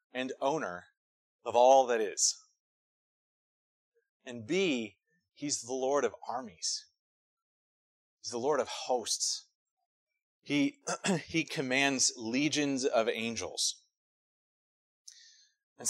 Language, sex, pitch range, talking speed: English, male, 110-150 Hz, 95 wpm